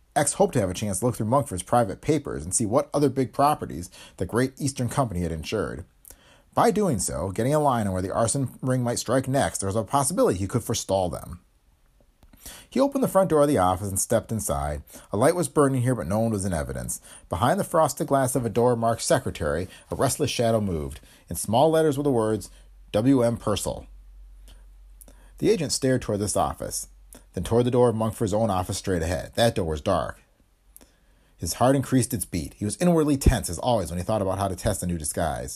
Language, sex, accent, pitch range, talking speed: English, male, American, 90-140 Hz, 220 wpm